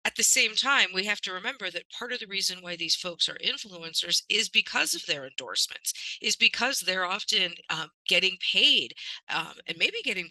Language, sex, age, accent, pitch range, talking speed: English, female, 40-59, American, 165-205 Hz, 200 wpm